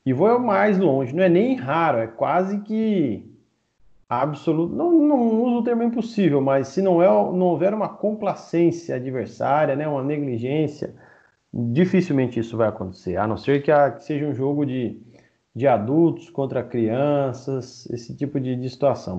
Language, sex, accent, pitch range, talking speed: Portuguese, male, Brazilian, 130-190 Hz, 165 wpm